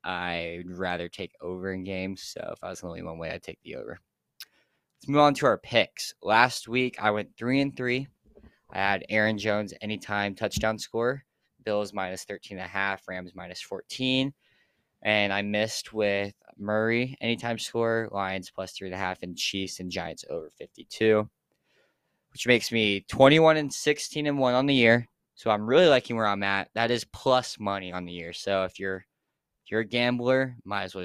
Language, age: English, 10-29